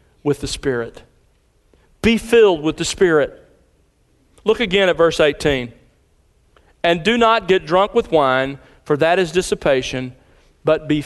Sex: male